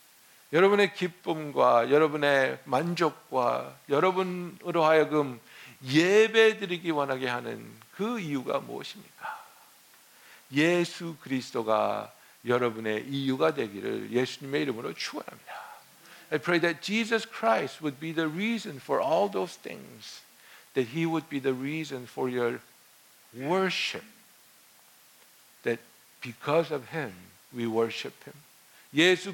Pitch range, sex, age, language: 120-165 Hz, male, 60-79, Korean